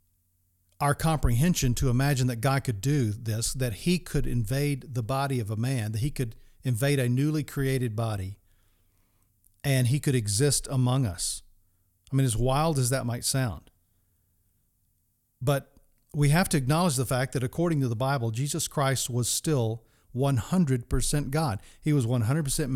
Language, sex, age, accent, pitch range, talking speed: English, male, 40-59, American, 105-140 Hz, 160 wpm